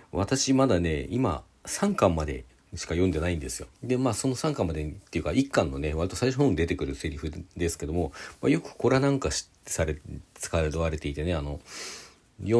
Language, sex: Japanese, male